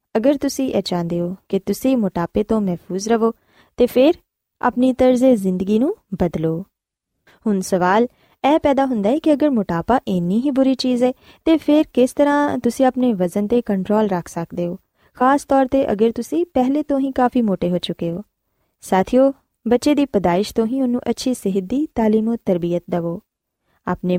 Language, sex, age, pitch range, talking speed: Punjabi, female, 20-39, 190-260 Hz, 170 wpm